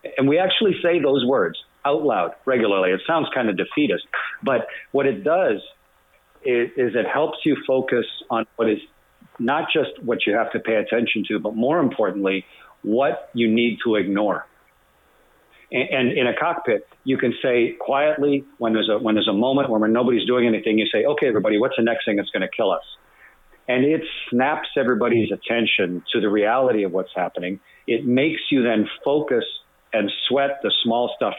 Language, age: English, 50-69